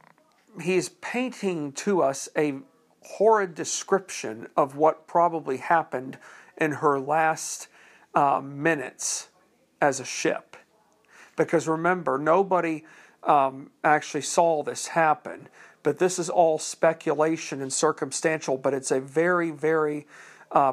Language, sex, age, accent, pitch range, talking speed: English, male, 50-69, American, 150-175 Hz, 115 wpm